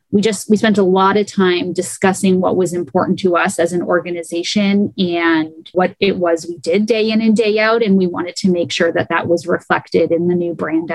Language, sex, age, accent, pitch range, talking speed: English, female, 30-49, American, 180-205 Hz, 230 wpm